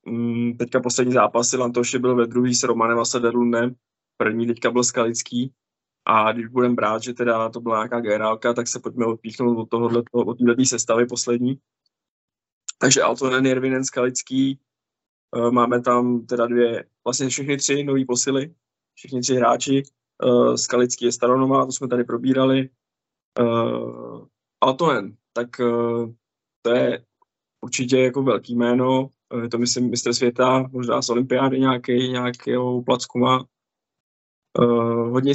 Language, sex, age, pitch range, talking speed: Czech, male, 20-39, 120-130 Hz, 130 wpm